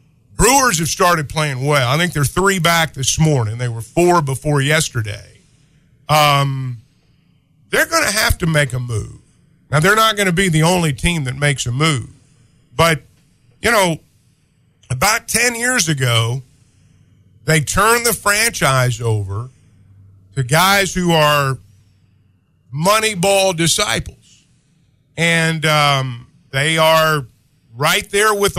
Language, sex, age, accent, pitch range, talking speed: English, male, 50-69, American, 135-200 Hz, 135 wpm